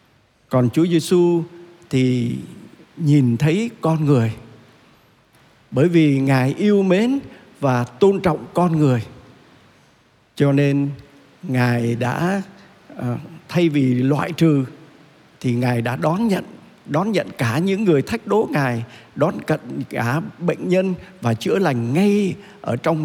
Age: 60-79